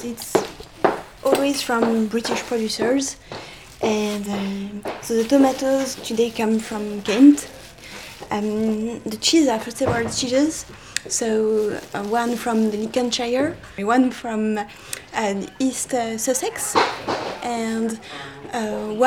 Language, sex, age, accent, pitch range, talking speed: English, female, 20-39, French, 210-240 Hz, 115 wpm